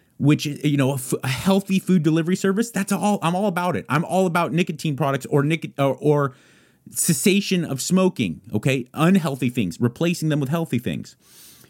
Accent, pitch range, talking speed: American, 145-215 Hz, 185 wpm